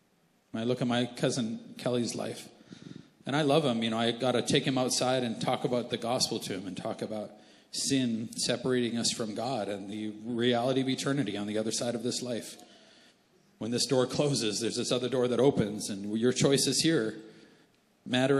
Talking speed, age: 200 wpm, 40-59